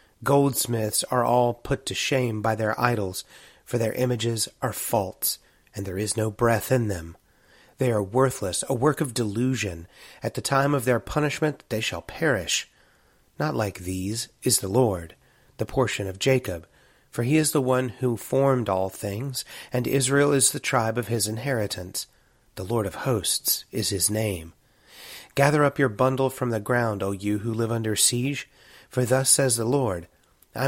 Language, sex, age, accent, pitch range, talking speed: English, male, 30-49, American, 105-130 Hz, 175 wpm